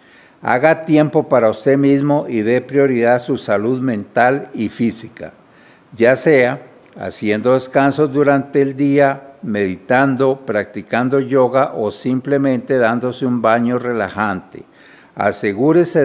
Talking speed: 115 wpm